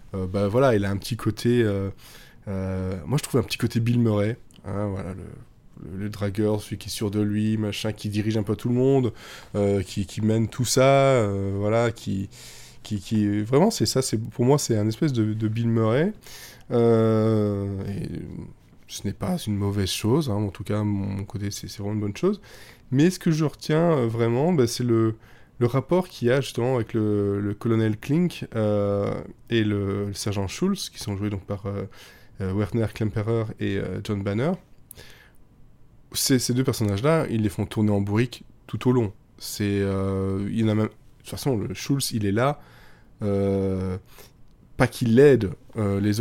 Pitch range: 100-125 Hz